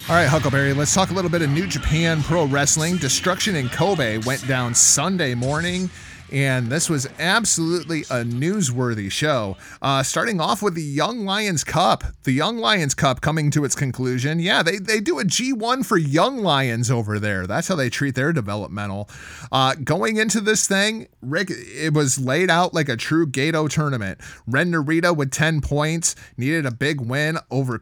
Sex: male